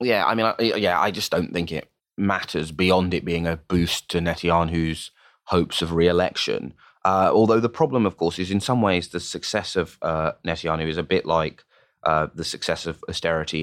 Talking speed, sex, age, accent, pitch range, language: 195 wpm, male, 20-39, British, 80-90 Hz, English